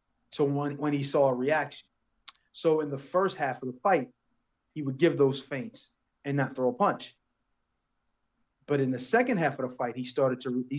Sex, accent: male, American